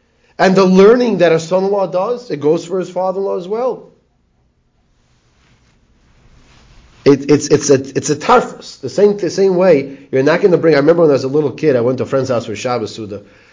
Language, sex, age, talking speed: English, male, 30-49, 215 wpm